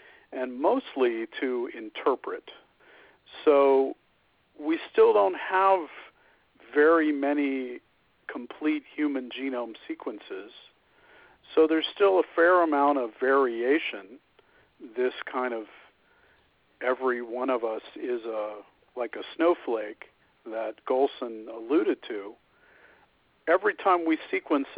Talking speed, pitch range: 105 wpm, 120-195 Hz